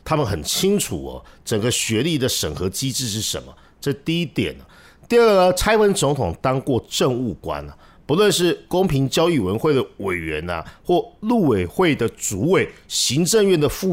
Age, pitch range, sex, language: 50-69, 110-165 Hz, male, Chinese